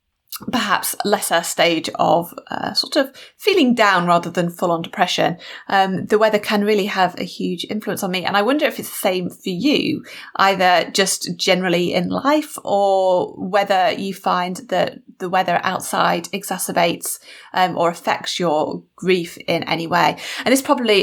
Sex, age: female, 30-49